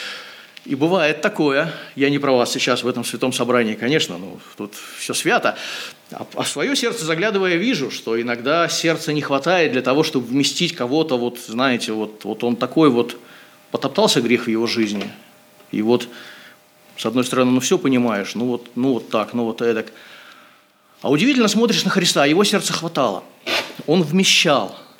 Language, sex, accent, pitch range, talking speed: Russian, male, native, 125-190 Hz, 170 wpm